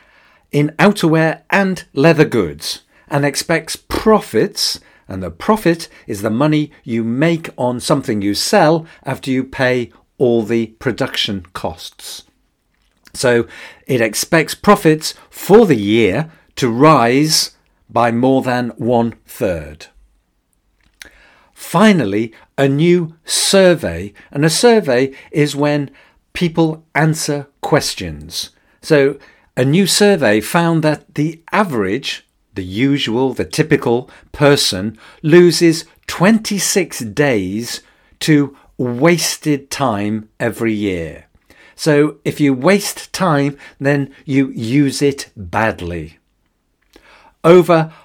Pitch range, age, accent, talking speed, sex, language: 115-165 Hz, 50-69, British, 105 wpm, male, English